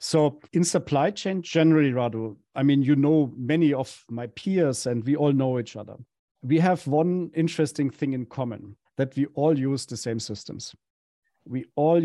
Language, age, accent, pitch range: English, 50-69, German, 125-150 Hz